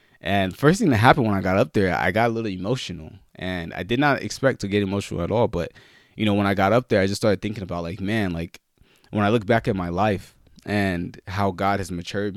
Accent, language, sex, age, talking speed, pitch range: American, English, male, 20-39, 255 wpm, 85-105 Hz